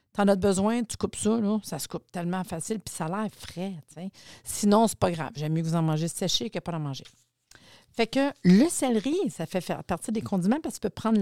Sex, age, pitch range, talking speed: female, 50-69, 170-225 Hz, 250 wpm